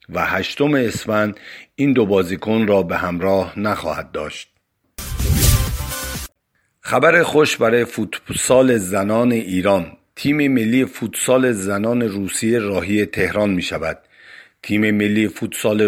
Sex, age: male, 50-69